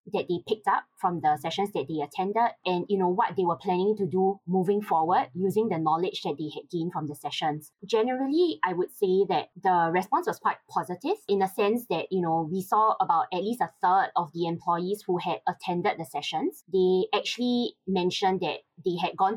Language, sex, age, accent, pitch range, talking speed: English, female, 20-39, Malaysian, 170-200 Hz, 215 wpm